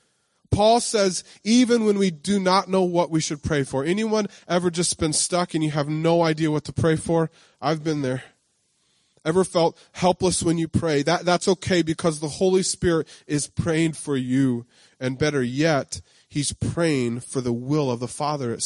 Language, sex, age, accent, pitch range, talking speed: English, male, 20-39, American, 125-165 Hz, 190 wpm